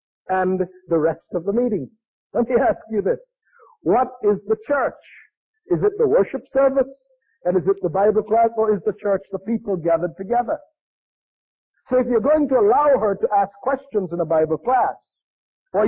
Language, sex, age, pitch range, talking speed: English, male, 50-69, 205-285 Hz, 185 wpm